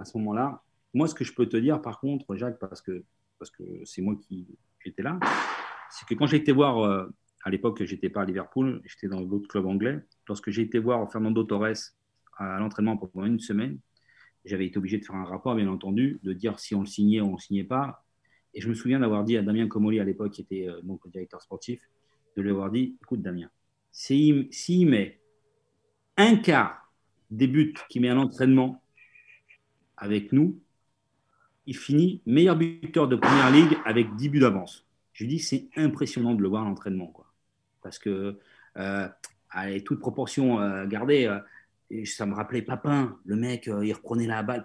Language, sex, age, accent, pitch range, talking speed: French, male, 40-59, French, 100-135 Hz, 205 wpm